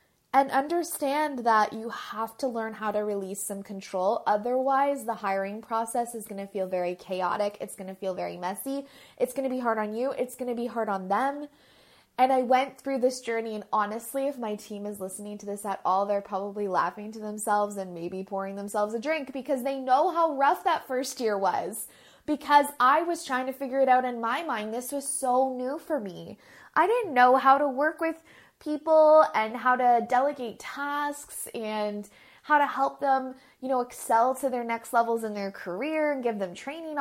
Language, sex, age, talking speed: English, female, 20-39, 210 wpm